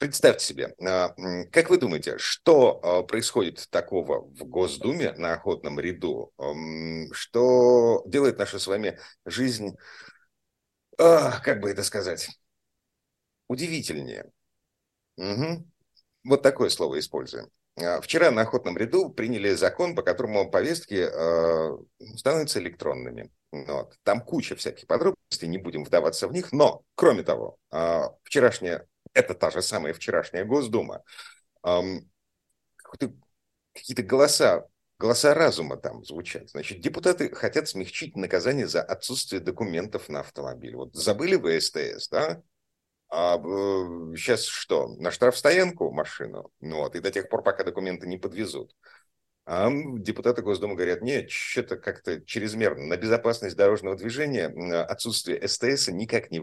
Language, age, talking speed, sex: Russian, 50-69, 115 wpm, male